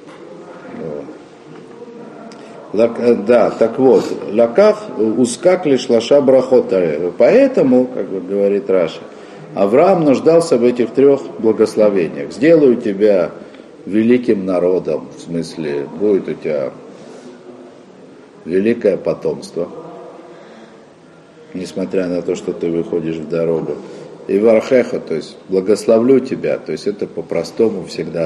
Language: Russian